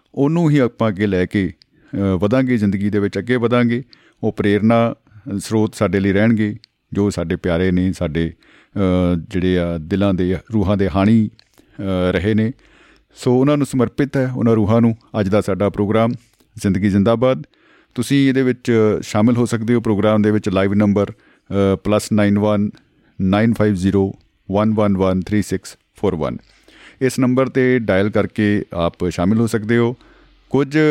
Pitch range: 100-120 Hz